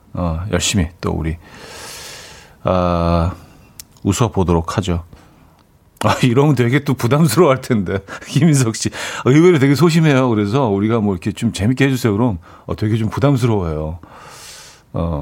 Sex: male